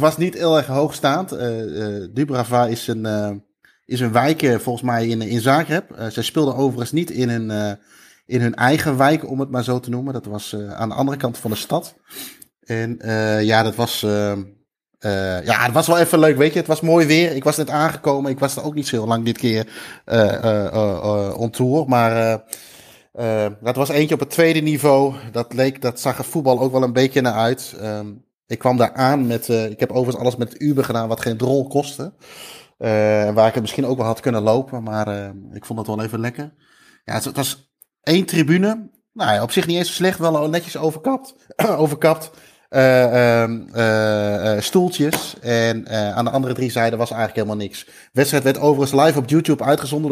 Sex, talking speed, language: male, 220 wpm, Dutch